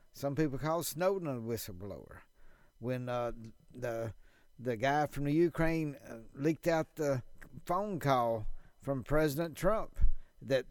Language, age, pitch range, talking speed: English, 50-69, 125-160 Hz, 130 wpm